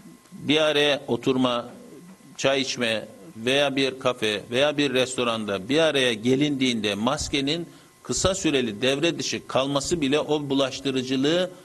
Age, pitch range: 50-69, 130-170 Hz